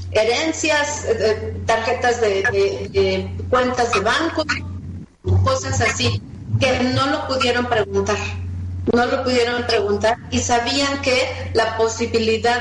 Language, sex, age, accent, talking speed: Spanish, female, 40-59, Mexican, 120 wpm